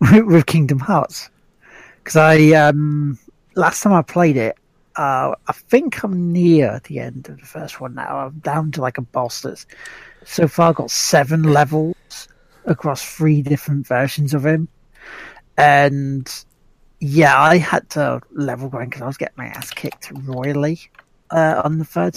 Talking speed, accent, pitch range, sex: 160 wpm, British, 145-185 Hz, male